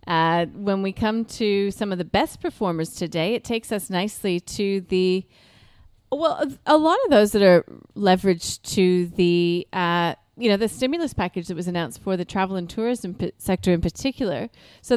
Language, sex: English, female